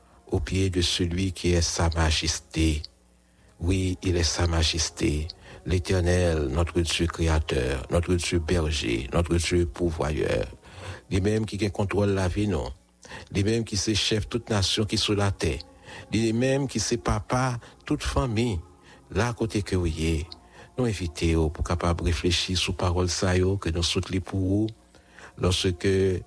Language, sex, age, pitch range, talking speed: English, male, 60-79, 85-110 Hz, 155 wpm